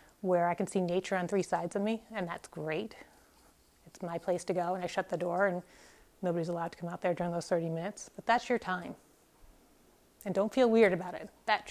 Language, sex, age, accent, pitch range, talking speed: English, female, 30-49, American, 185-220 Hz, 230 wpm